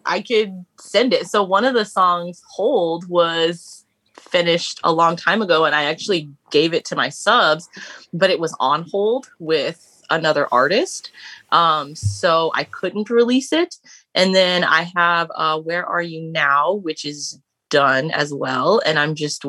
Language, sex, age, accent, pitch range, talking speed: English, female, 20-39, American, 155-185 Hz, 170 wpm